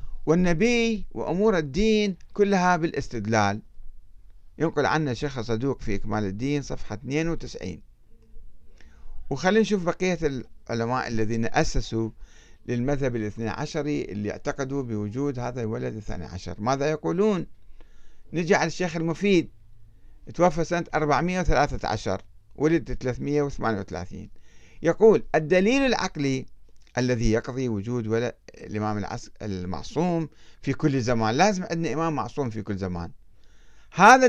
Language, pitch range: Arabic, 110-160 Hz